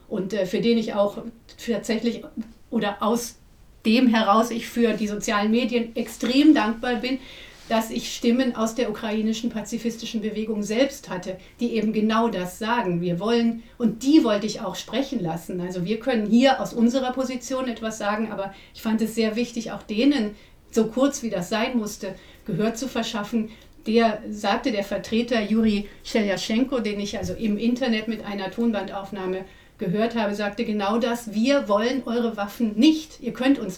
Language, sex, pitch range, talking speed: German, female, 200-235 Hz, 170 wpm